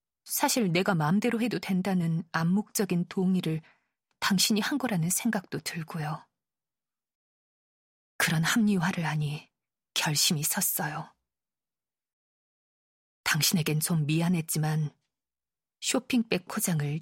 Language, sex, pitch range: Korean, female, 160-205 Hz